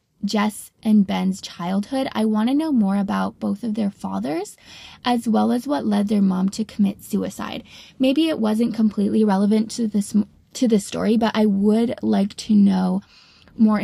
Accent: American